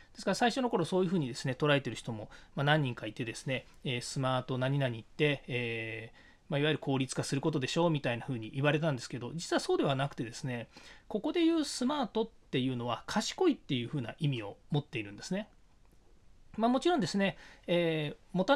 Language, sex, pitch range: Japanese, male, 130-185 Hz